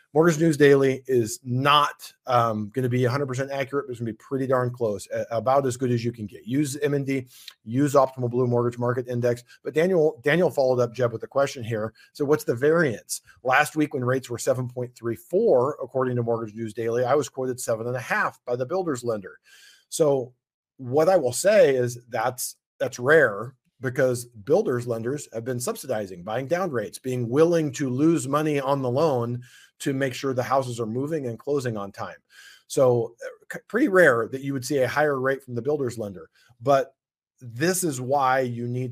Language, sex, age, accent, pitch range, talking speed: English, male, 40-59, American, 120-145 Hz, 190 wpm